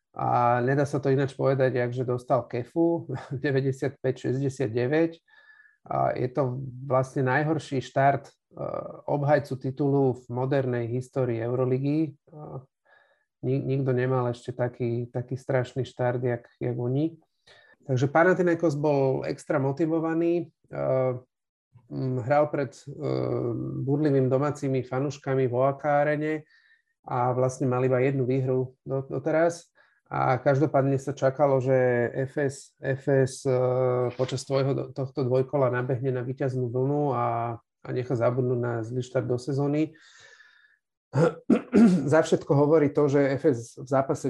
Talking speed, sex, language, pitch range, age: 110 wpm, male, Slovak, 125-150 Hz, 40-59